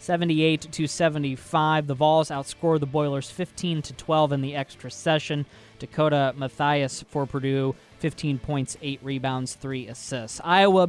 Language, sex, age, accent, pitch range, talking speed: English, male, 20-39, American, 135-170 Hz, 145 wpm